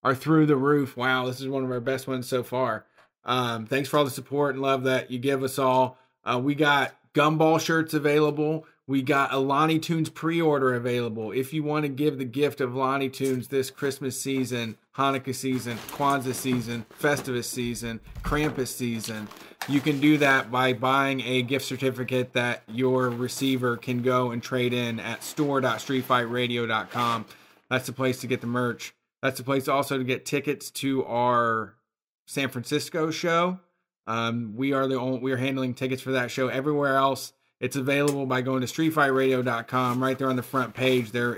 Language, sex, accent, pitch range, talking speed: English, male, American, 125-135 Hz, 185 wpm